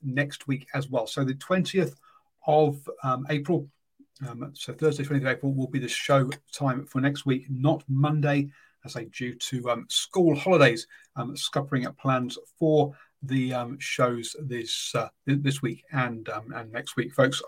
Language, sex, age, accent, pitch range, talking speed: English, male, 40-59, British, 130-155 Hz, 180 wpm